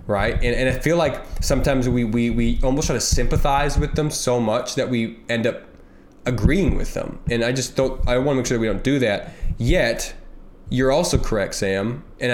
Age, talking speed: 20-39, 220 wpm